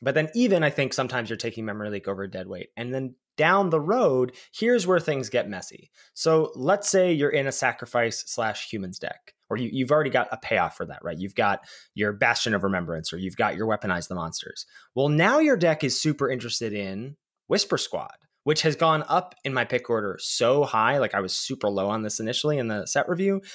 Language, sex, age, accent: English, male, 20-39, American